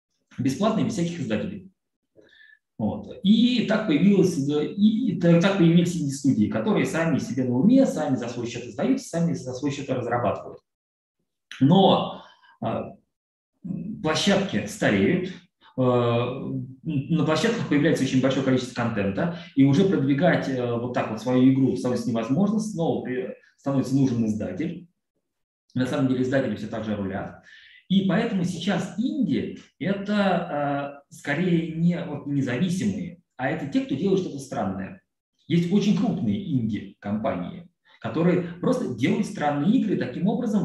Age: 20-39